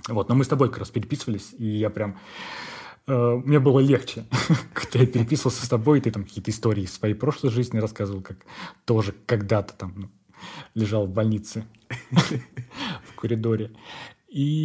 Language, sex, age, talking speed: Russian, male, 20-39, 155 wpm